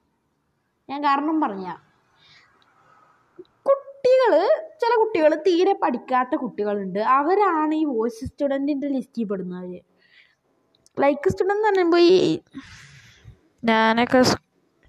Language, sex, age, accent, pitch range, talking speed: Malayalam, female, 20-39, native, 225-330 Hz, 85 wpm